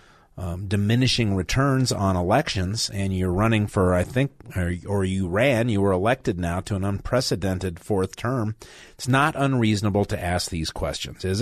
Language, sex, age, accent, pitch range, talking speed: English, male, 40-59, American, 95-125 Hz, 170 wpm